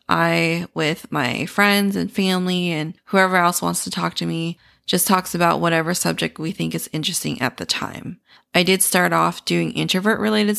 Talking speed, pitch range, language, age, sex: 180 wpm, 160-190 Hz, English, 20-39, female